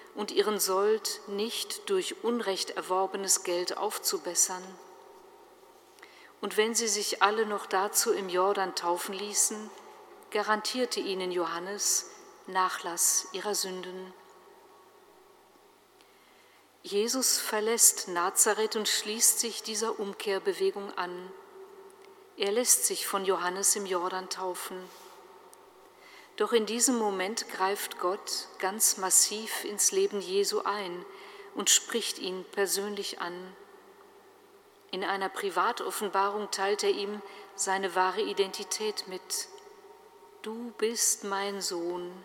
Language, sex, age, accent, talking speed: German, female, 50-69, German, 105 wpm